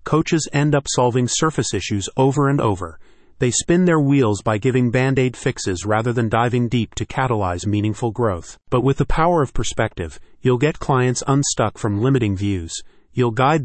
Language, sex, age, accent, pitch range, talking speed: English, male, 30-49, American, 110-135 Hz, 175 wpm